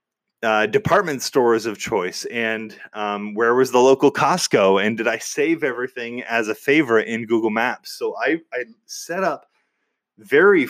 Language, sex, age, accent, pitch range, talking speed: English, male, 20-39, American, 110-175 Hz, 165 wpm